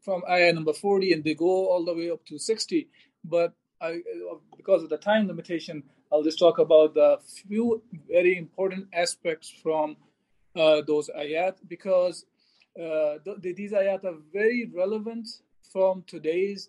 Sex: male